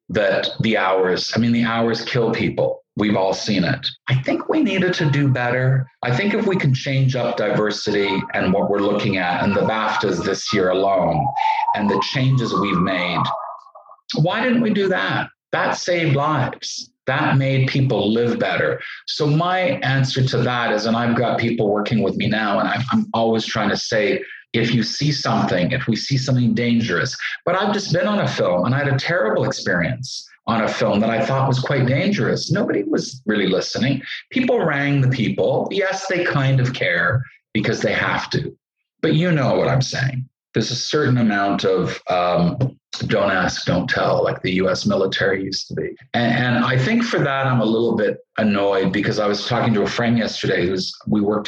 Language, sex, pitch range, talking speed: English, male, 115-140 Hz, 200 wpm